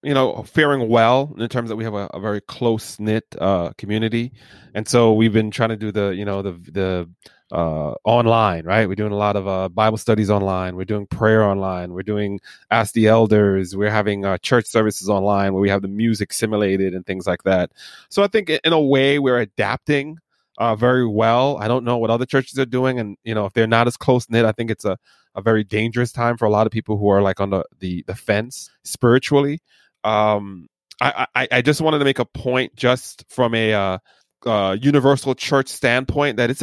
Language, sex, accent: English, male, American